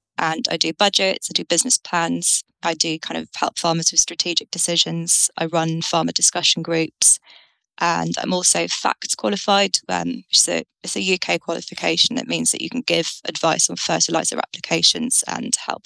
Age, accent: 20-39, British